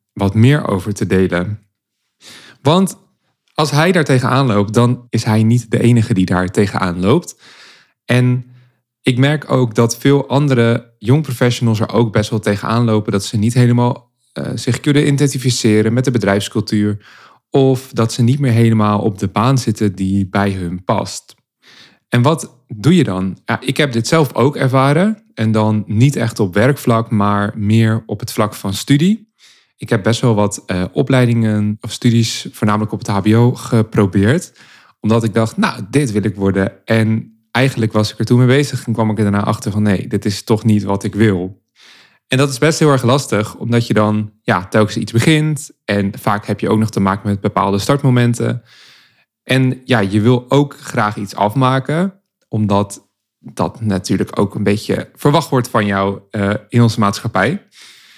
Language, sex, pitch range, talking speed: Dutch, male, 105-130 Hz, 180 wpm